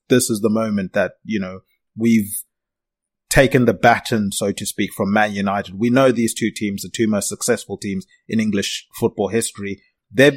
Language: English